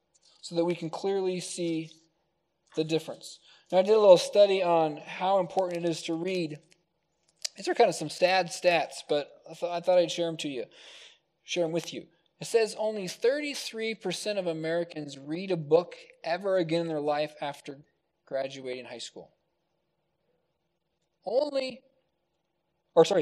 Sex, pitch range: male, 165-215 Hz